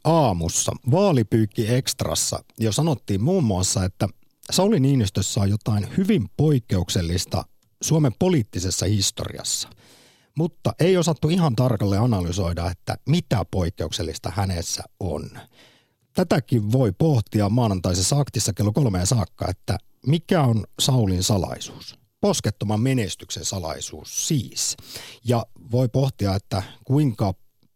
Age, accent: 50-69, native